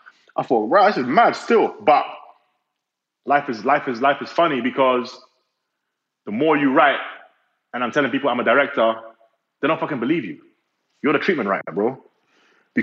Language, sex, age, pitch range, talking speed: English, male, 30-49, 120-160 Hz, 180 wpm